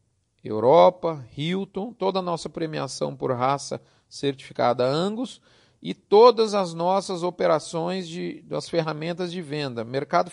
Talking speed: 120 wpm